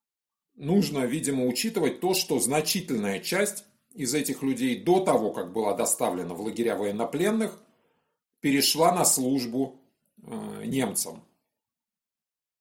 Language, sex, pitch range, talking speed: Russian, male, 130-215 Hz, 105 wpm